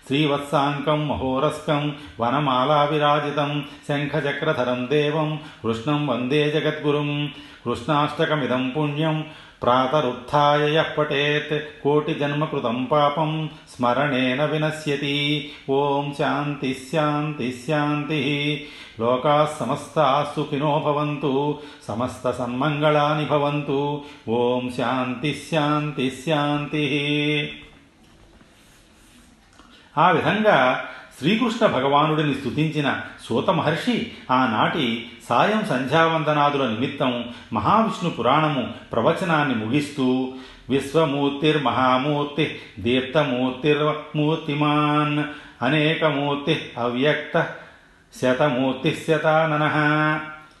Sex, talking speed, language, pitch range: male, 45 wpm, Telugu, 135-150 Hz